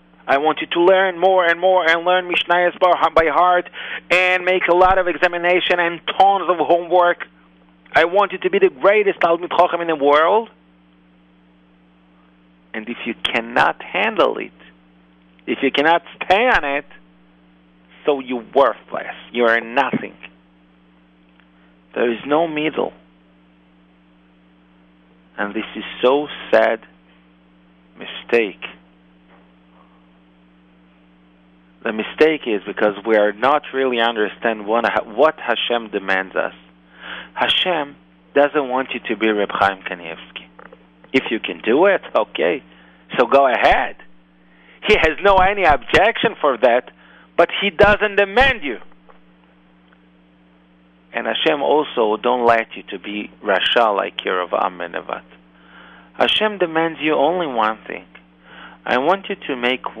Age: 40-59